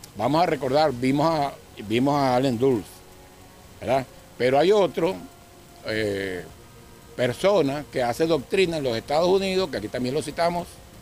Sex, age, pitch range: male, 60-79, 110-160 Hz